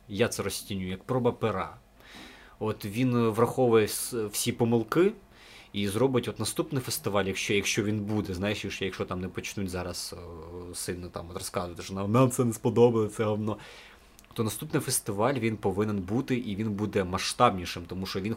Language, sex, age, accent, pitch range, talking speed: Russian, male, 20-39, native, 100-120 Hz, 165 wpm